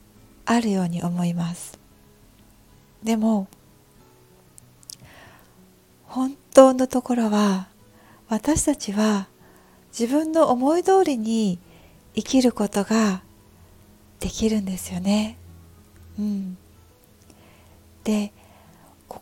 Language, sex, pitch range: Japanese, female, 190-245 Hz